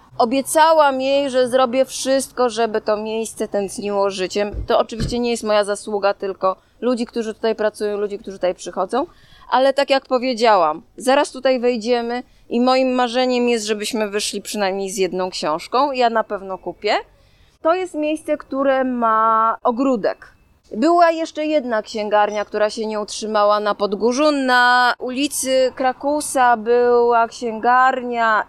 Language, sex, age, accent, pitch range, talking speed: Polish, female, 20-39, native, 210-255 Hz, 140 wpm